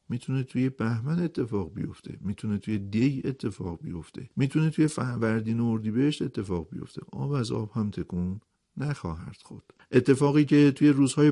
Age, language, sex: 50-69, Persian, male